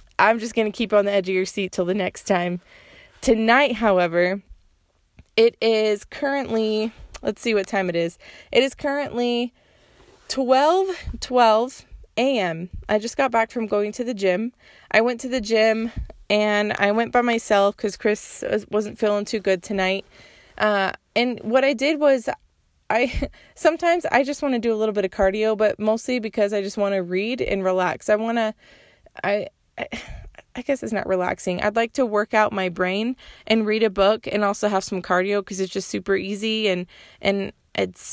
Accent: American